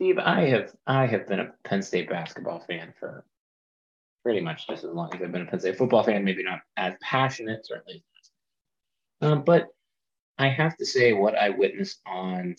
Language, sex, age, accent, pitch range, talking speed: English, male, 30-49, American, 100-145 Hz, 190 wpm